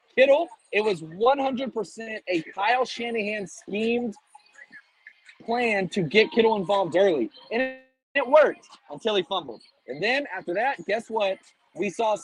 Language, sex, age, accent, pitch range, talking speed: English, male, 30-49, American, 195-260 Hz, 135 wpm